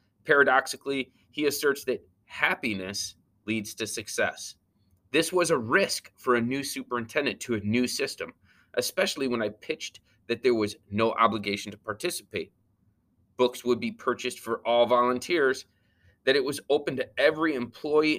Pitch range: 100-135 Hz